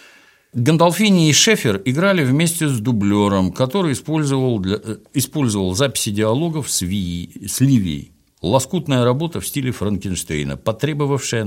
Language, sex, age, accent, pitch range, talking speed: Russian, male, 60-79, native, 95-150 Hz, 120 wpm